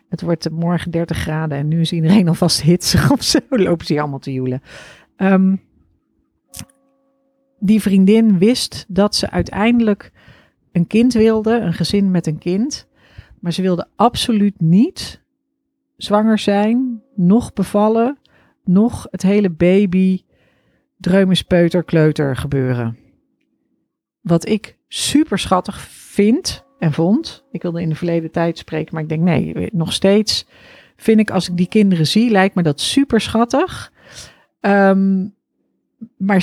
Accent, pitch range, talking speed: Dutch, 175-220 Hz, 140 wpm